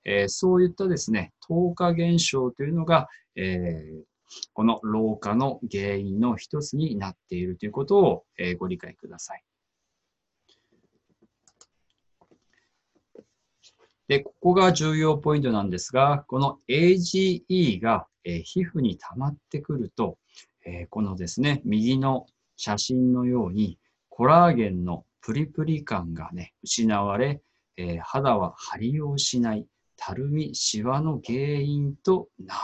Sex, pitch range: male, 105-160 Hz